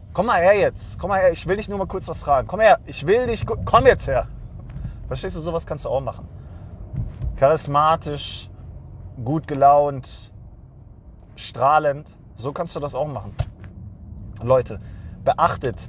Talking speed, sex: 160 wpm, male